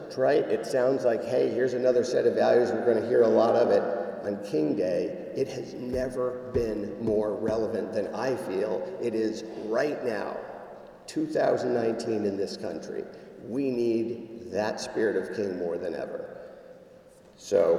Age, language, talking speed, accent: 50-69, English, 160 wpm, American